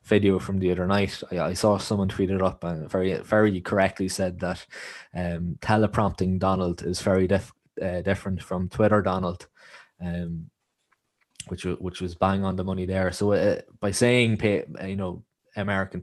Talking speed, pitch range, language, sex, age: 170 wpm, 90-100 Hz, English, male, 20-39